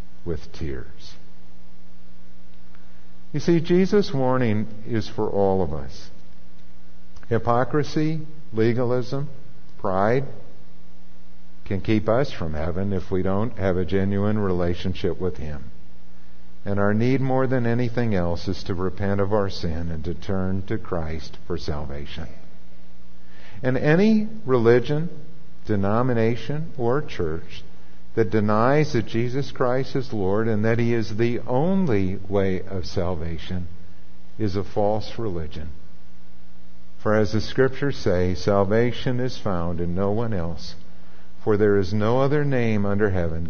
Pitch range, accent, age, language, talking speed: 75-115 Hz, American, 50-69, English, 130 wpm